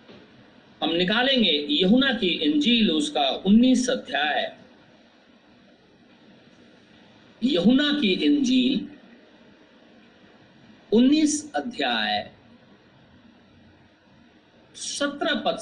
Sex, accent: male, native